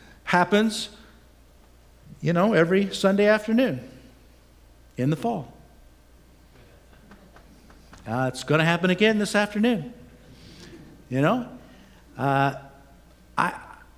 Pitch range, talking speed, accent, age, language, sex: 130-220 Hz, 85 wpm, American, 60-79, English, male